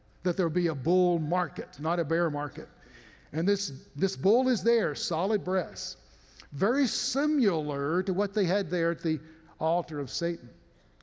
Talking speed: 170 wpm